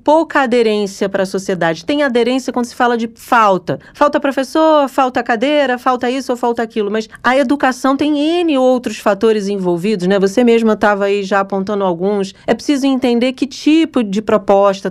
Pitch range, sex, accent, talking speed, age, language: 200-255 Hz, female, Brazilian, 175 wpm, 40-59, Portuguese